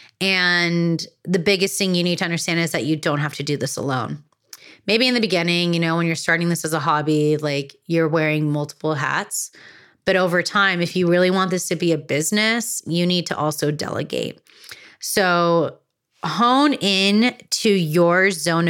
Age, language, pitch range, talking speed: 30-49, English, 165-205 Hz, 185 wpm